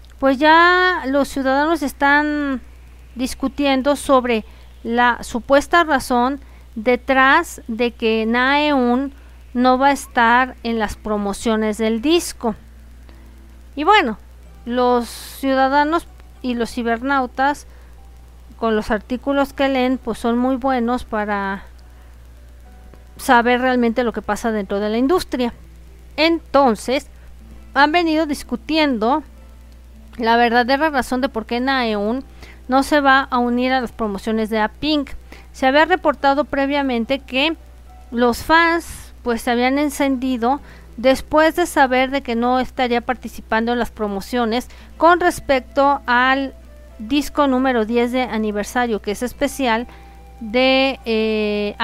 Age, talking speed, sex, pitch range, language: 40-59, 120 wpm, female, 225-280 Hz, Spanish